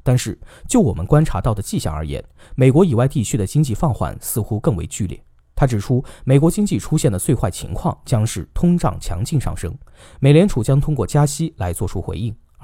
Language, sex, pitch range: Chinese, male, 100-150 Hz